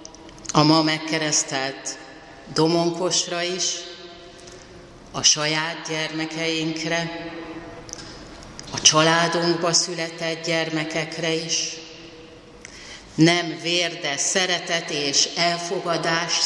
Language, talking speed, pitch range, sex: Hungarian, 65 wpm, 155-175 Hz, female